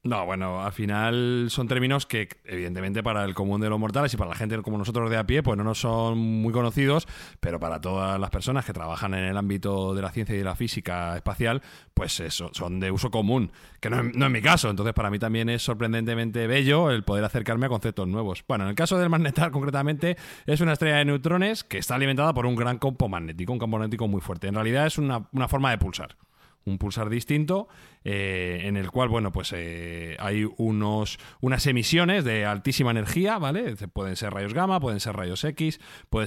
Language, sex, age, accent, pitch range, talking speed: Spanish, male, 30-49, Spanish, 105-140 Hz, 215 wpm